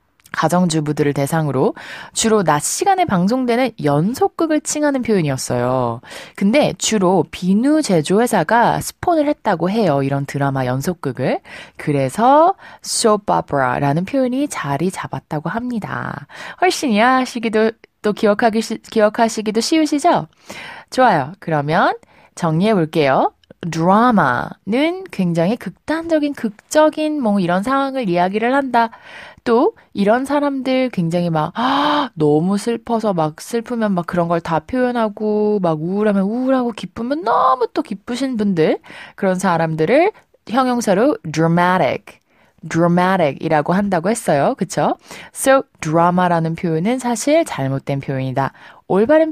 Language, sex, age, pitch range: Korean, female, 20-39, 165-260 Hz